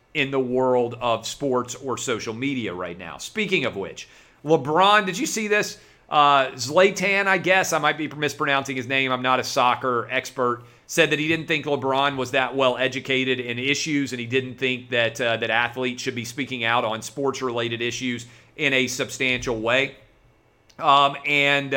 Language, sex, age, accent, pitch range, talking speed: English, male, 40-59, American, 125-160 Hz, 185 wpm